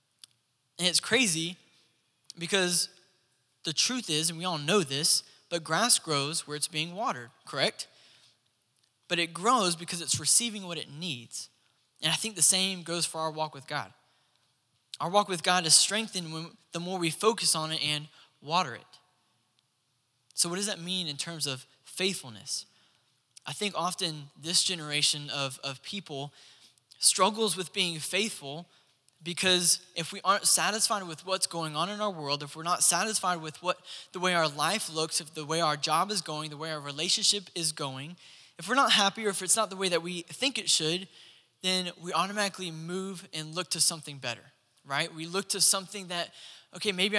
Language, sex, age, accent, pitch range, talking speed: English, male, 10-29, American, 150-190 Hz, 185 wpm